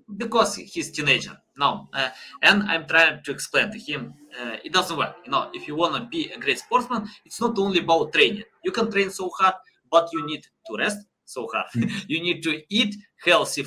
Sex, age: male, 20-39